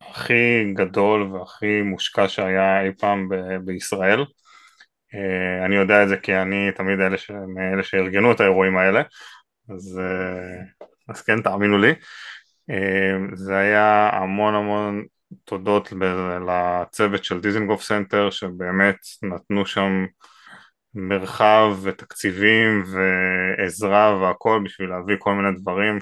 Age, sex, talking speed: 20-39, male, 120 wpm